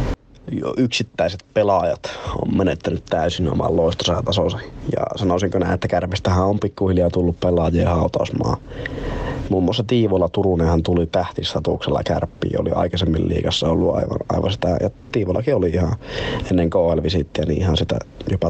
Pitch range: 85-100 Hz